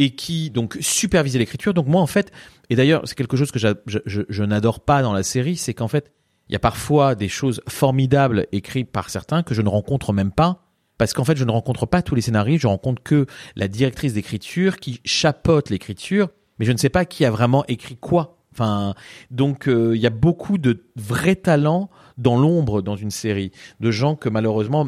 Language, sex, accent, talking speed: French, male, French, 215 wpm